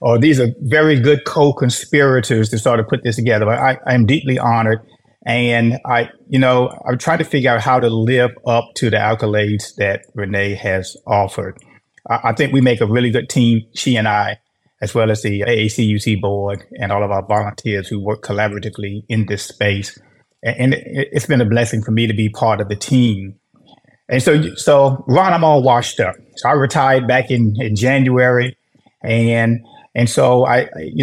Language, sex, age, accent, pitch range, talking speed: English, male, 30-49, American, 110-135 Hz, 190 wpm